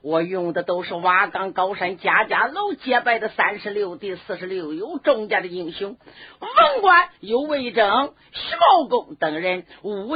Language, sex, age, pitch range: Chinese, female, 50-69, 210-315 Hz